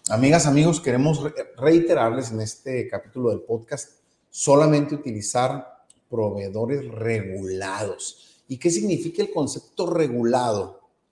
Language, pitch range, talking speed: Spanish, 115-155 Hz, 105 wpm